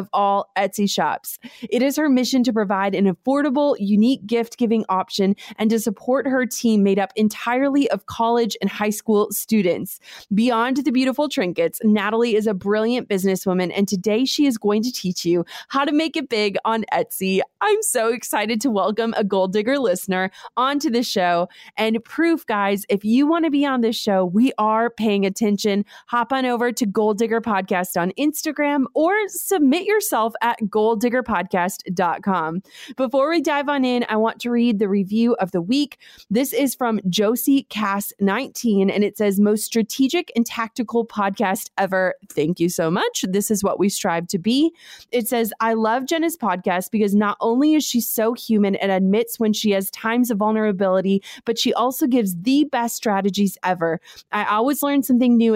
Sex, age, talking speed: female, 20-39, 180 wpm